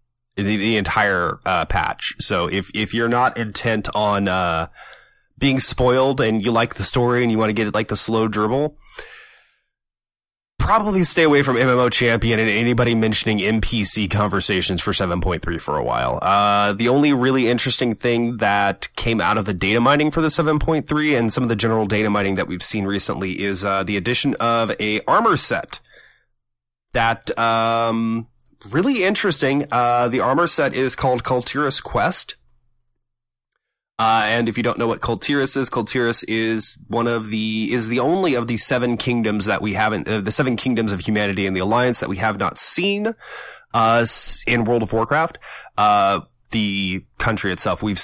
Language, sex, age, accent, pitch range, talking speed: English, male, 20-39, American, 105-125 Hz, 175 wpm